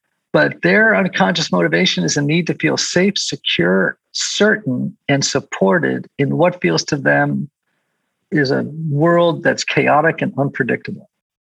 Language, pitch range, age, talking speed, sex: English, 145-195 Hz, 50-69, 135 wpm, male